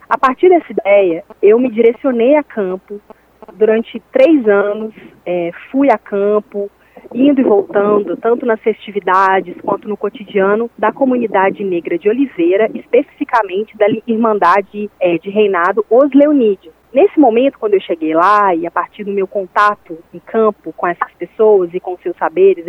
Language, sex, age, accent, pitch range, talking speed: Portuguese, female, 30-49, Brazilian, 200-260 Hz, 155 wpm